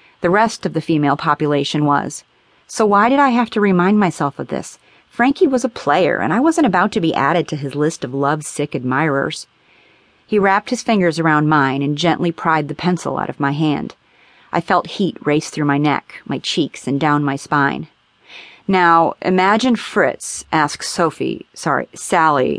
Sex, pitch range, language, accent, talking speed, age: female, 140-195 Hz, English, American, 185 wpm, 40-59